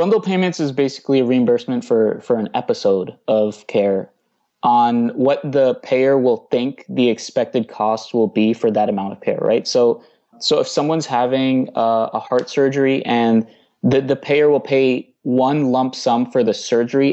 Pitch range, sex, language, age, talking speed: 110-135 Hz, male, English, 20-39, 175 wpm